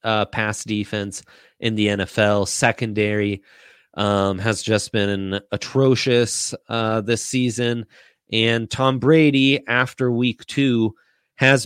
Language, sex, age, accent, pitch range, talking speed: English, male, 30-49, American, 100-115 Hz, 115 wpm